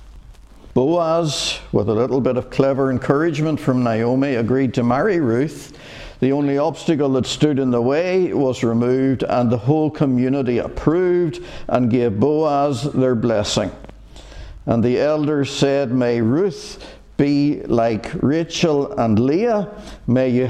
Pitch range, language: 115-150 Hz, English